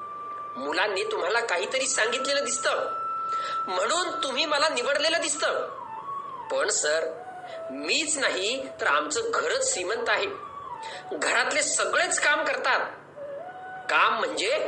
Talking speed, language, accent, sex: 40 wpm, Marathi, native, male